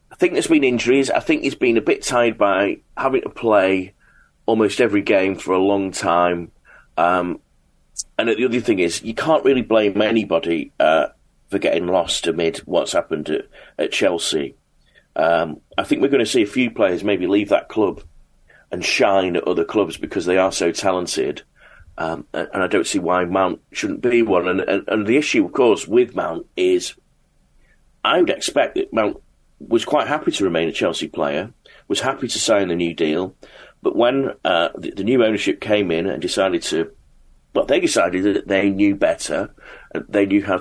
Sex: male